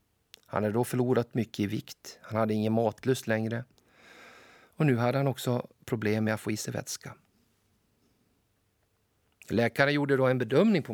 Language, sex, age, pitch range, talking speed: Swedish, male, 50-69, 110-130 Hz, 165 wpm